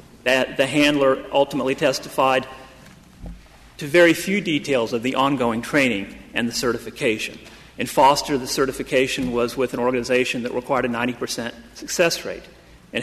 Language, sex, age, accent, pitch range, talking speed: English, male, 40-59, American, 115-150 Hz, 145 wpm